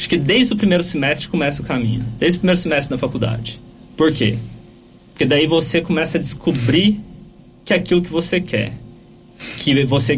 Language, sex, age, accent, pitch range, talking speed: Portuguese, male, 20-39, Brazilian, 120-160 Hz, 185 wpm